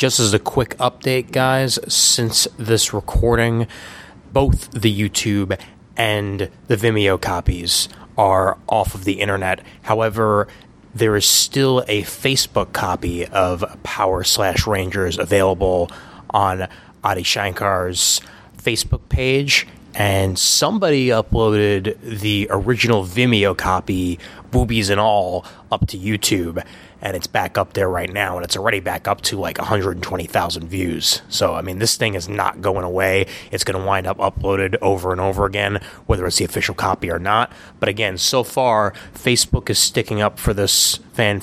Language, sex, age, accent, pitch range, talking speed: English, male, 20-39, American, 95-115 Hz, 150 wpm